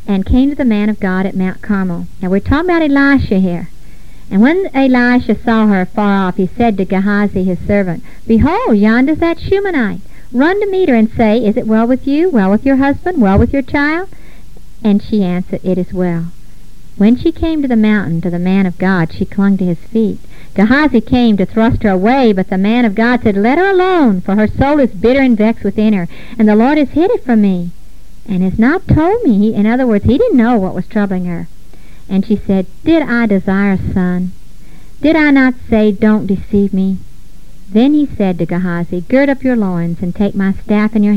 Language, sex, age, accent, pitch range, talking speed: English, male, 50-69, American, 190-260 Hz, 220 wpm